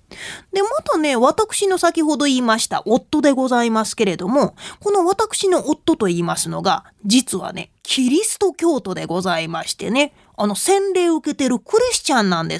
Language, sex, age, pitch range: Japanese, female, 30-49, 210-345 Hz